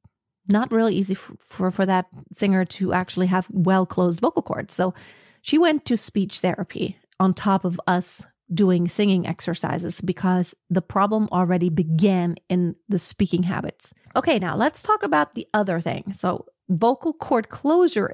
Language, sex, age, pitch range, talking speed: English, female, 40-59, 180-220 Hz, 160 wpm